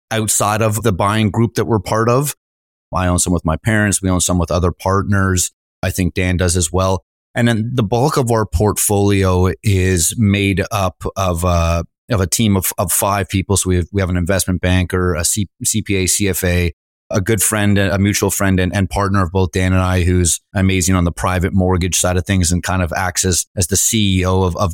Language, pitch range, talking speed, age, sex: English, 90-115 Hz, 220 wpm, 30-49, male